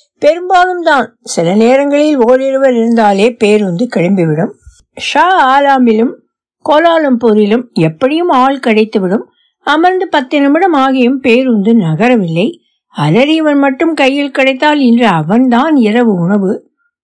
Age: 60-79